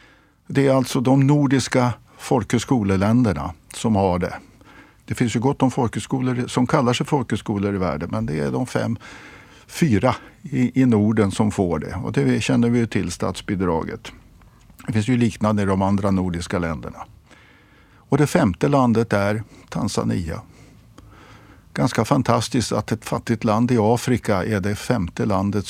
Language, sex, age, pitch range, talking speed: Swedish, male, 50-69, 100-130 Hz, 155 wpm